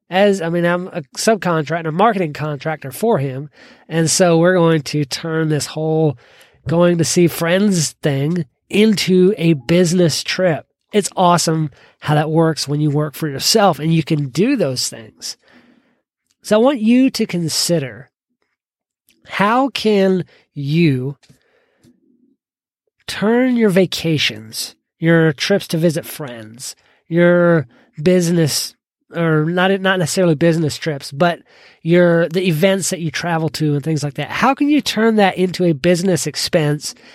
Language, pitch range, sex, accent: English, 150-195 Hz, male, American